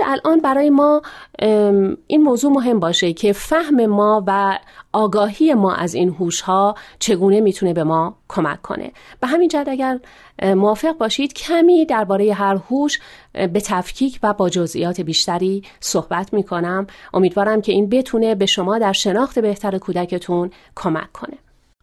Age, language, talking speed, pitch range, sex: 40-59, Persian, 145 wpm, 185-245 Hz, female